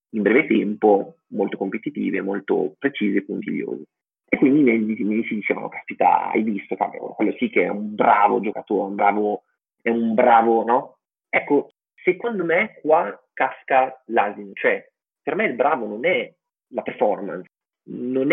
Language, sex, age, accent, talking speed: Italian, male, 30-49, native, 155 wpm